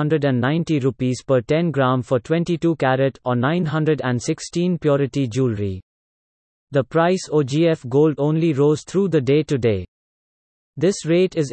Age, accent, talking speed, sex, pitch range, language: 30-49, Indian, 135 wpm, male, 130-160 Hz, English